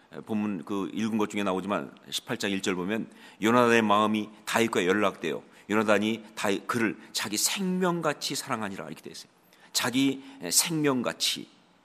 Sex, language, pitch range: male, Korean, 115-155 Hz